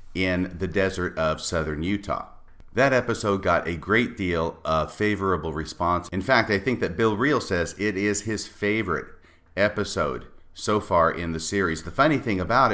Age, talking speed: 50-69, 175 wpm